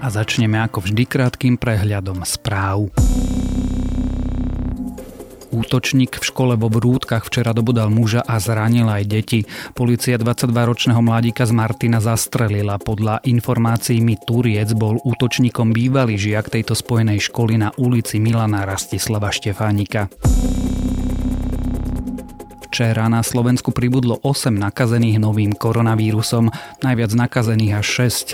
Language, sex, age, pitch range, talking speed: Slovak, male, 30-49, 105-120 Hz, 110 wpm